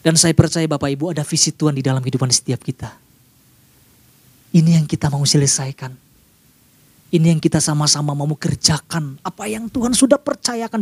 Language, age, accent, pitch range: Indonesian, 30-49, native, 135-175 Hz